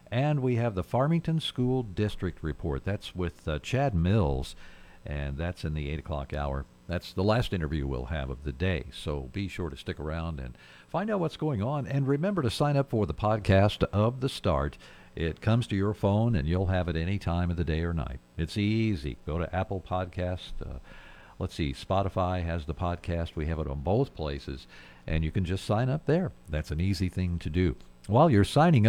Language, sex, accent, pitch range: English, male, American, 80-110 Hz